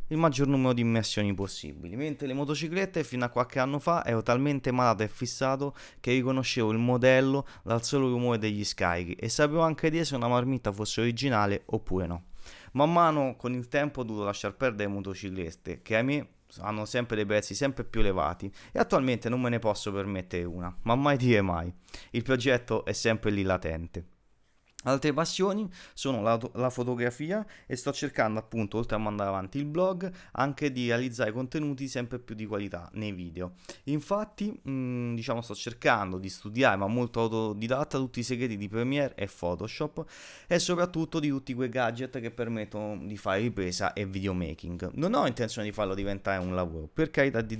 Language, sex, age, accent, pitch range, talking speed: Italian, male, 30-49, native, 100-135 Hz, 185 wpm